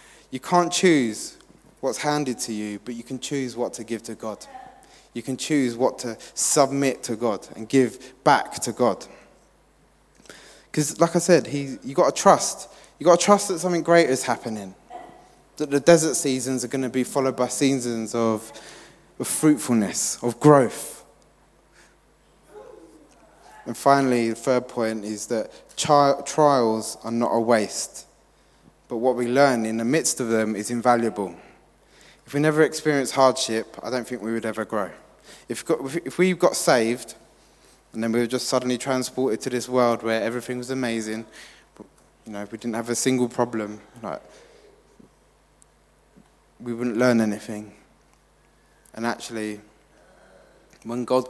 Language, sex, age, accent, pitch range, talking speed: English, male, 20-39, British, 110-135 Hz, 160 wpm